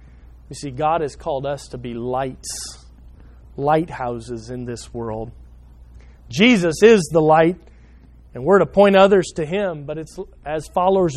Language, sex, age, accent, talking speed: English, male, 40-59, American, 150 wpm